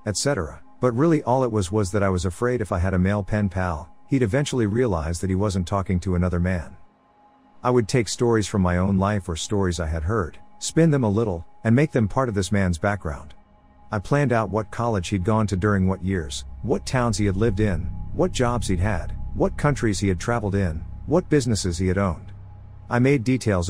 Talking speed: 225 wpm